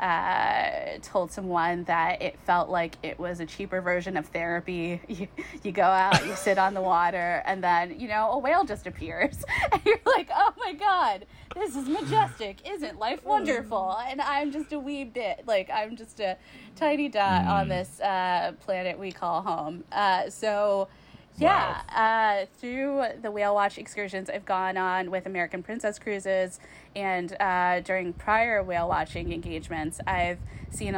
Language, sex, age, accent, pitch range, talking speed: English, female, 20-39, American, 175-220 Hz, 170 wpm